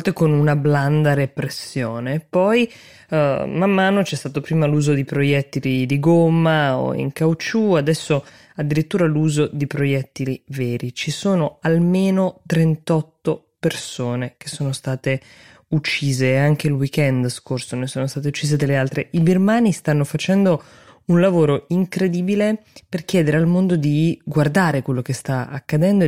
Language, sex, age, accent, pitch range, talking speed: Italian, female, 20-39, native, 135-165 Hz, 140 wpm